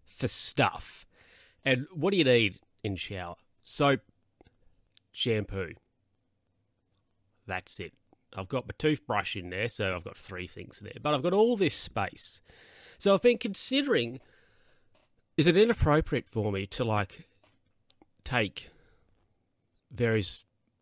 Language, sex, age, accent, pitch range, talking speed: English, male, 30-49, Australian, 100-135 Hz, 130 wpm